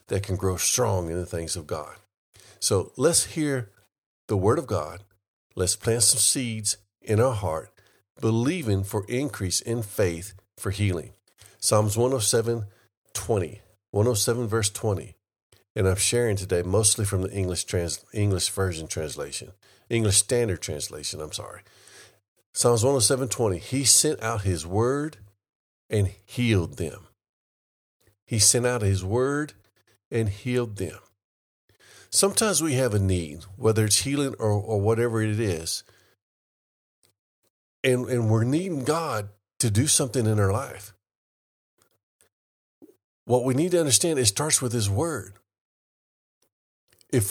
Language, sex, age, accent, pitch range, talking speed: English, male, 50-69, American, 100-125 Hz, 135 wpm